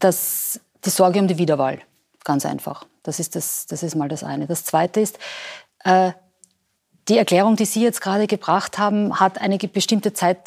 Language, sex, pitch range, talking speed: German, female, 180-220 Hz, 170 wpm